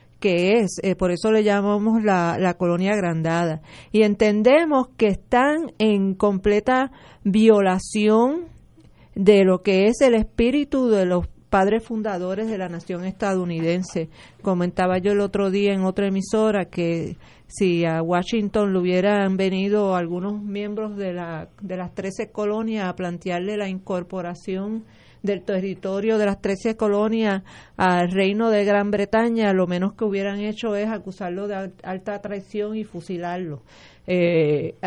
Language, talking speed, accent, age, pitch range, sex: Spanish, 140 wpm, American, 40-59, 175-210 Hz, female